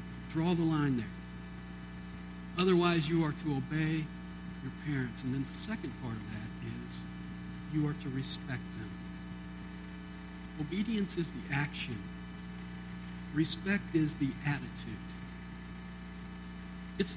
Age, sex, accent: 60-79, male, American